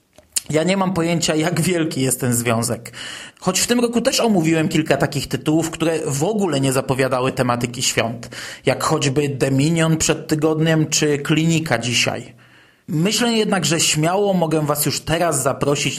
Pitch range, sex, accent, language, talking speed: 135-175 Hz, male, native, Polish, 160 wpm